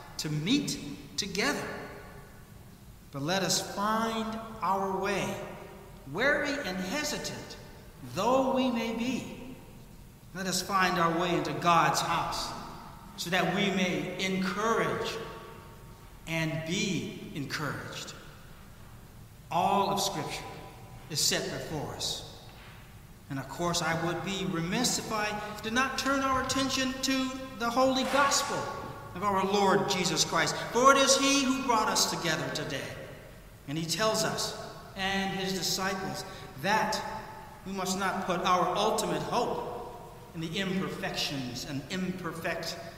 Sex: male